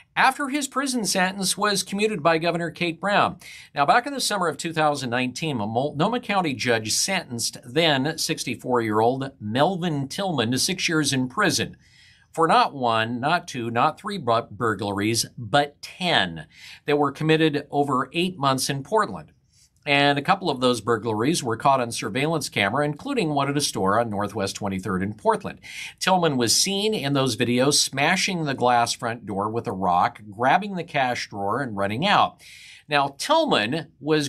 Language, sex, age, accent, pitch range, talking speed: English, male, 50-69, American, 120-165 Hz, 165 wpm